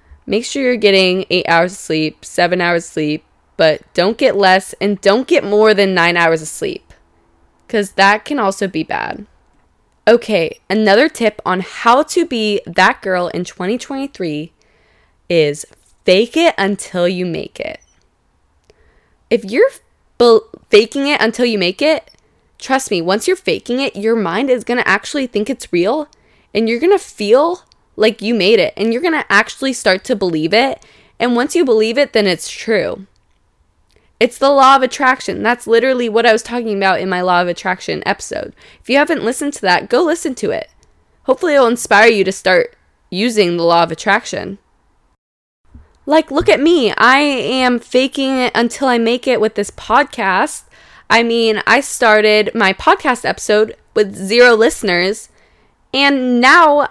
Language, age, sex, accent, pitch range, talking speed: English, 20-39, female, American, 185-265 Hz, 175 wpm